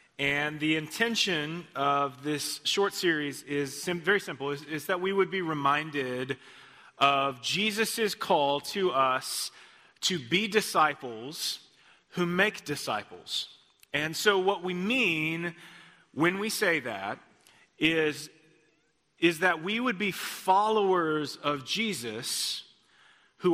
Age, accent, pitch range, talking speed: 30-49, American, 145-195 Hz, 120 wpm